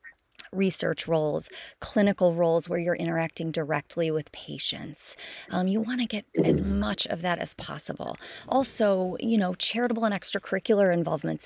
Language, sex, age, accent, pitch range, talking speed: English, female, 20-39, American, 155-180 Hz, 145 wpm